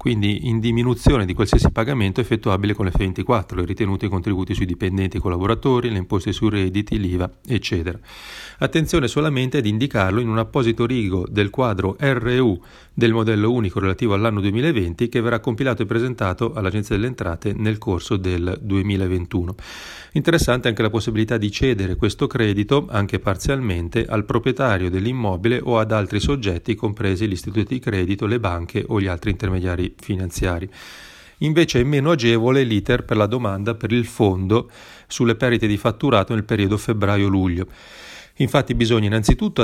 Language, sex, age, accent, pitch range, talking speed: Italian, male, 30-49, native, 95-120 Hz, 160 wpm